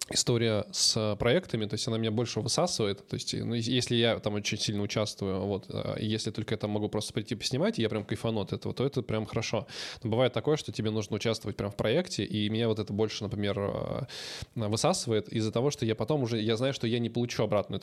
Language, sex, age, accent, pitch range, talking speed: Russian, male, 20-39, native, 105-125 Hz, 230 wpm